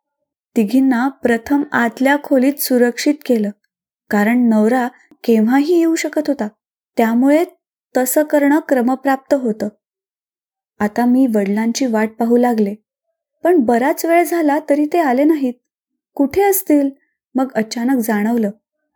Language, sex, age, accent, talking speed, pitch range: Marathi, female, 20-39, native, 115 wpm, 225-290 Hz